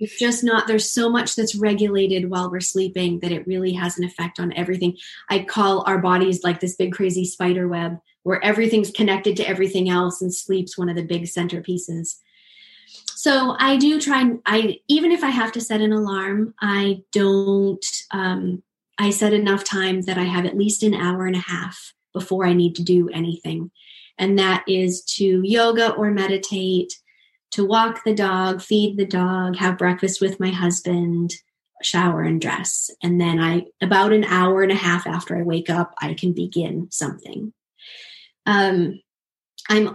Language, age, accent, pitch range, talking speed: English, 20-39, American, 180-210 Hz, 180 wpm